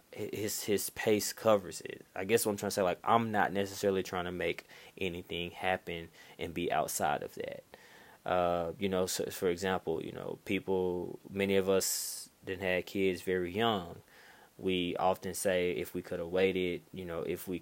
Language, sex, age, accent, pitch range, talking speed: English, male, 20-39, American, 85-95 Hz, 185 wpm